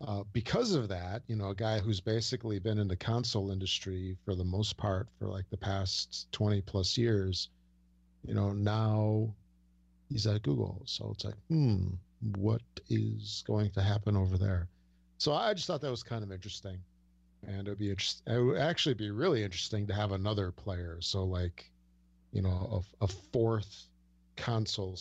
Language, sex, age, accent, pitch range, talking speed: English, male, 50-69, American, 90-110 Hz, 180 wpm